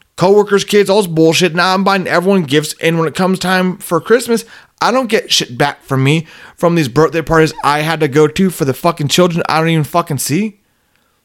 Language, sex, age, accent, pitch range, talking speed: English, male, 30-49, American, 125-180 Hz, 230 wpm